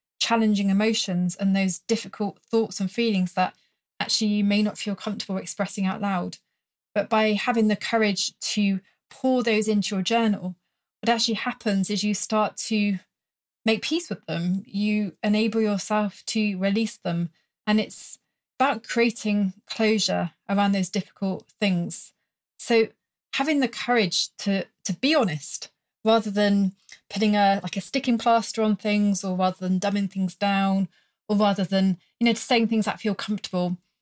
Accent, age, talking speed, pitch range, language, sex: British, 30-49, 155 wpm, 190-220 Hz, English, female